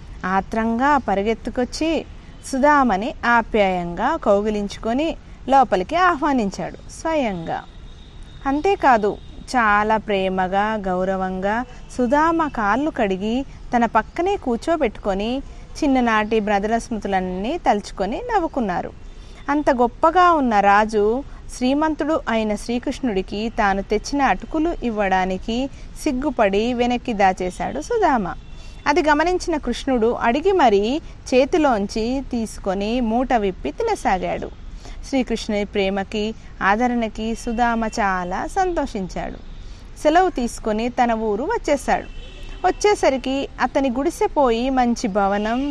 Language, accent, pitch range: Telugu, native, 205-285 Hz